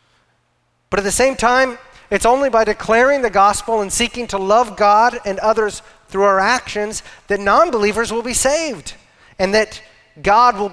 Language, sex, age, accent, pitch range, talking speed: English, male, 40-59, American, 150-210 Hz, 170 wpm